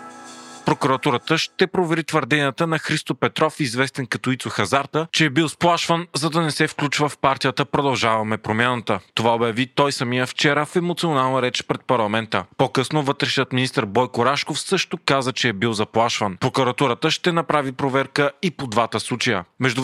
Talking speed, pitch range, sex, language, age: 165 wpm, 125-160 Hz, male, Bulgarian, 30-49